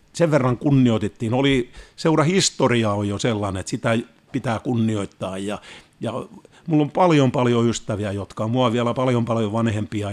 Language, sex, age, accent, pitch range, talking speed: Finnish, male, 50-69, native, 110-130 Hz, 150 wpm